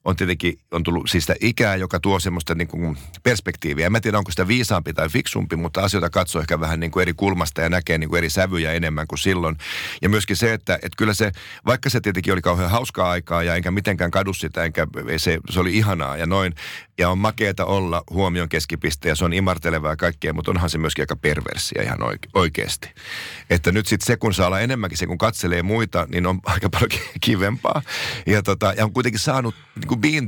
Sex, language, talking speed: male, Finnish, 210 wpm